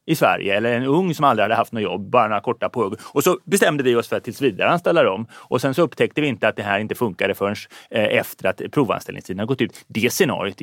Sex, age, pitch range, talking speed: male, 30-49, 110-155 Hz, 255 wpm